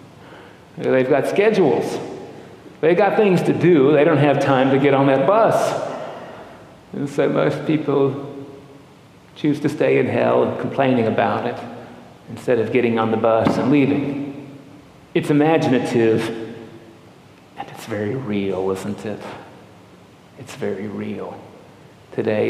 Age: 50-69